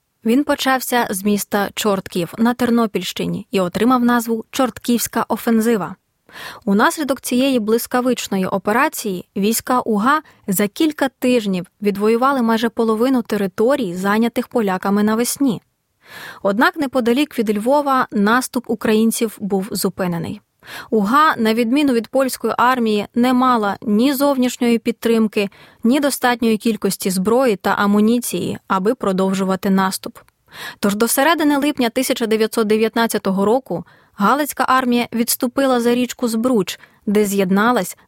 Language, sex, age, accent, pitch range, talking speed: Ukrainian, female, 20-39, native, 205-250 Hz, 110 wpm